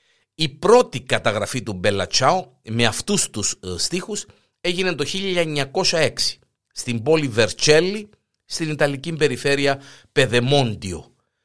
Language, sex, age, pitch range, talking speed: Greek, male, 50-69, 115-175 Hz, 100 wpm